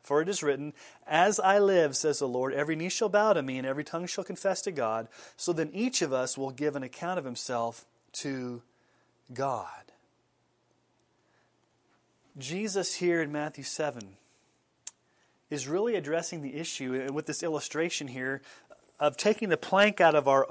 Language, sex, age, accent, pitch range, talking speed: English, male, 30-49, American, 140-180 Hz, 165 wpm